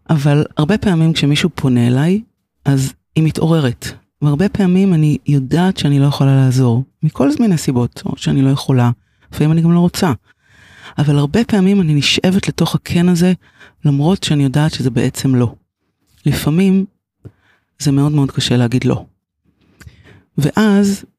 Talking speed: 145 wpm